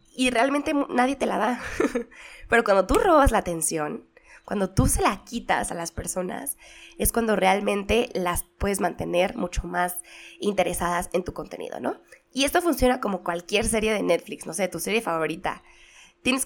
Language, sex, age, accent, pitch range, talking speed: Spanish, female, 20-39, Mexican, 175-240 Hz, 170 wpm